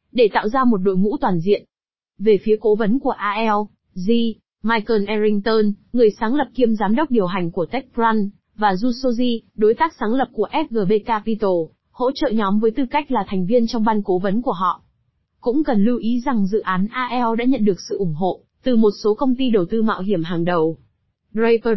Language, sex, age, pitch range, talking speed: Vietnamese, female, 20-39, 200-250 Hz, 210 wpm